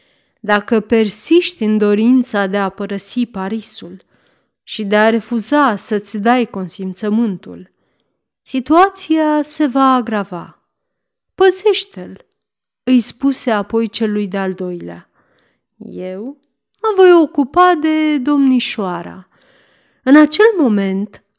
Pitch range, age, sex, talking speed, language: 205-260 Hz, 30-49, female, 100 wpm, Romanian